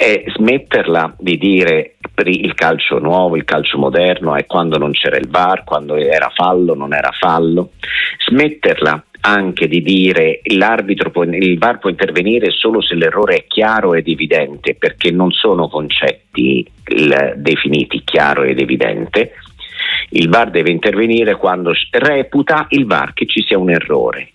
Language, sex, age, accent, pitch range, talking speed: Italian, male, 50-69, native, 80-105 Hz, 150 wpm